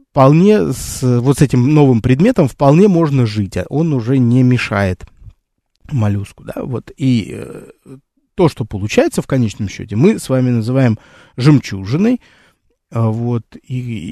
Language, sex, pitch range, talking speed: Russian, male, 110-145 Hz, 125 wpm